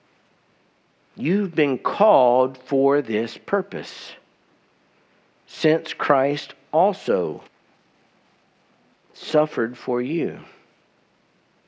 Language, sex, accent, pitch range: English, male, American, 125-160 Hz